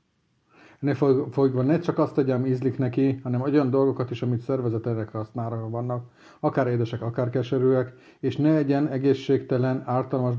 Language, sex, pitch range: Hungarian, male, 120-145 Hz